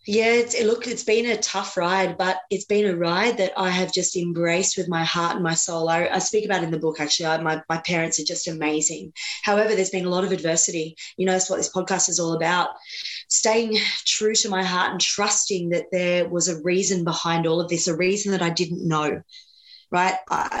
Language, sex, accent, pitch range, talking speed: English, female, Australian, 170-195 Hz, 235 wpm